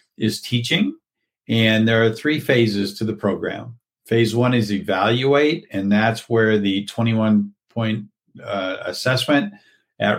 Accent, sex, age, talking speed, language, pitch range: American, male, 50-69, 135 wpm, English, 100-115 Hz